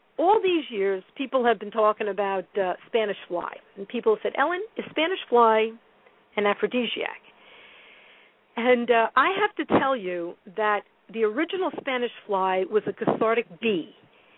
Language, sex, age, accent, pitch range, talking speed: English, female, 50-69, American, 210-275 Hz, 155 wpm